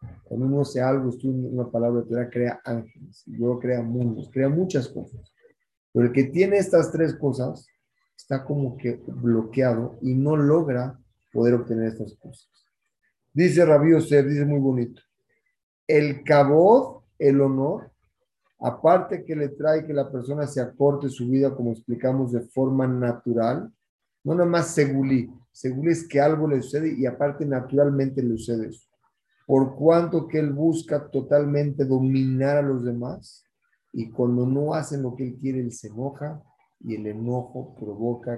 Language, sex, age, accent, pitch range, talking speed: Spanish, male, 40-59, Mexican, 120-145 Hz, 160 wpm